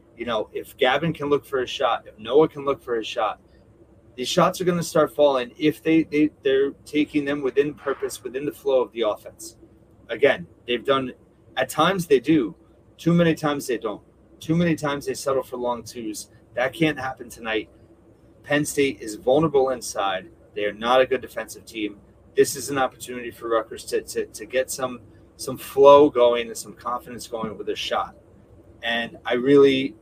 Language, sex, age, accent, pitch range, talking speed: English, male, 30-49, American, 120-155 Hz, 190 wpm